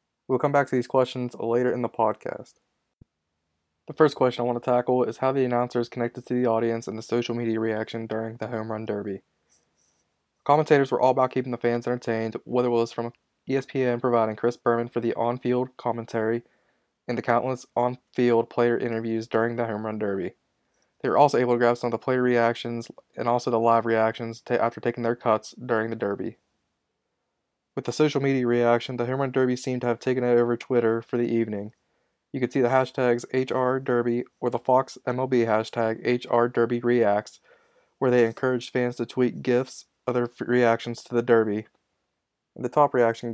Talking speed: 190 wpm